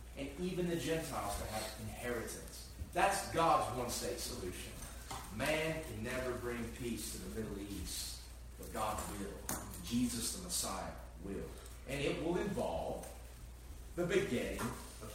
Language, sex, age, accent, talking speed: English, male, 40-59, American, 145 wpm